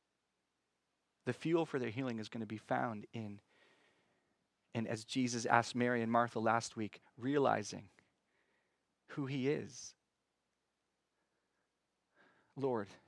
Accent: American